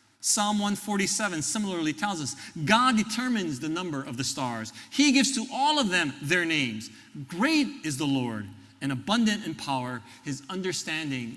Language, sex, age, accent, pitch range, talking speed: English, male, 40-59, American, 120-180 Hz, 160 wpm